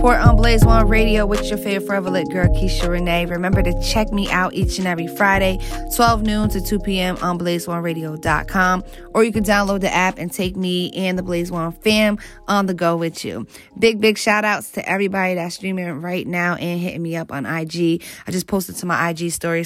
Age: 20-39